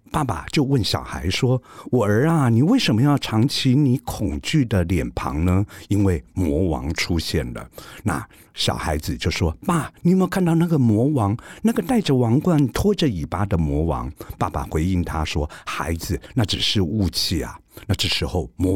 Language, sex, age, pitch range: Chinese, male, 60-79, 85-135 Hz